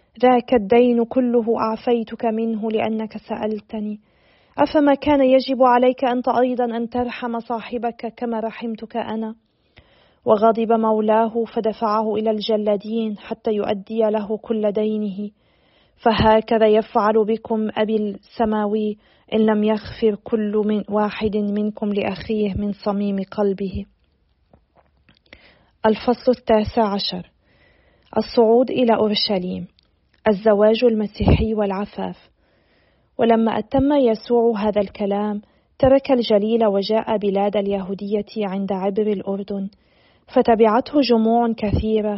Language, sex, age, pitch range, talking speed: Arabic, female, 40-59, 210-235 Hz, 100 wpm